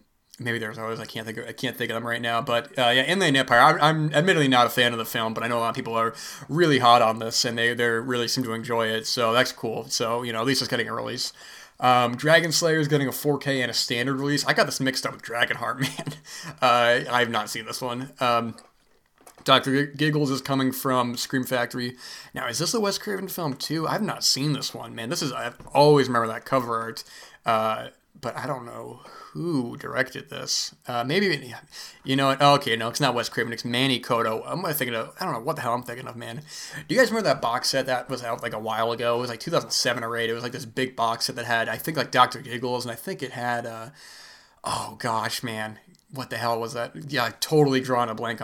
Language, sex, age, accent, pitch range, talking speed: English, male, 20-39, American, 115-140 Hz, 255 wpm